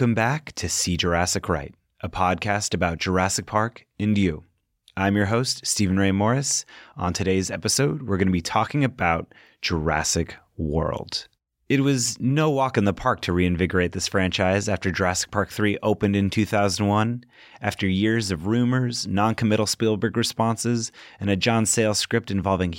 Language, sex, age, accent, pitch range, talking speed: English, male, 30-49, American, 95-120 Hz, 160 wpm